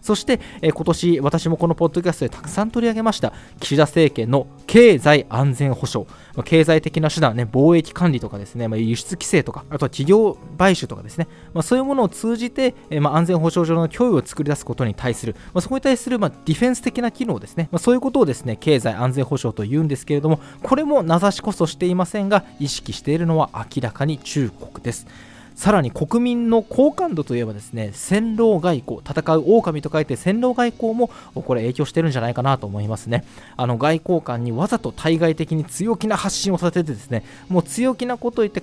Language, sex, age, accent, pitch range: Japanese, male, 20-39, native, 130-205 Hz